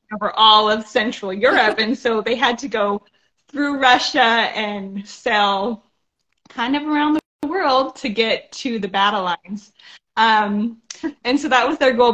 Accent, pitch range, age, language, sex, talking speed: American, 205-260 Hz, 20-39, English, female, 165 wpm